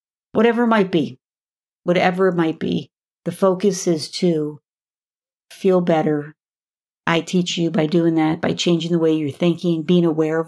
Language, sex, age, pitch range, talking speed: English, female, 50-69, 165-185 Hz, 165 wpm